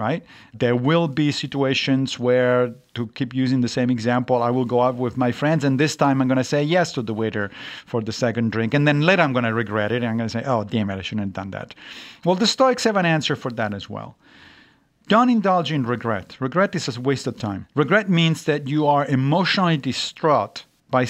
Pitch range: 120-150 Hz